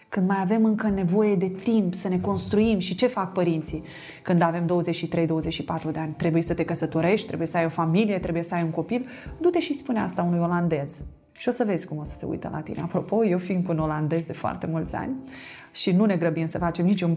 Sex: female